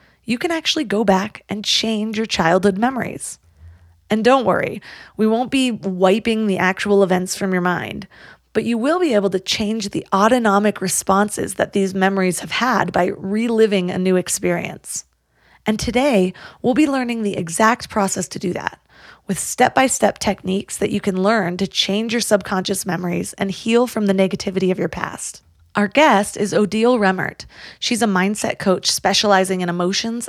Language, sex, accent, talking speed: English, female, American, 170 wpm